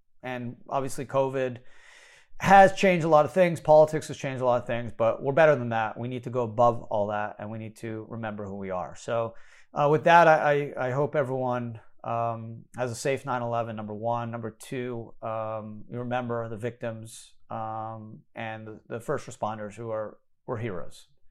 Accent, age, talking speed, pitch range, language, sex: American, 30-49, 190 wpm, 110-135 Hz, English, male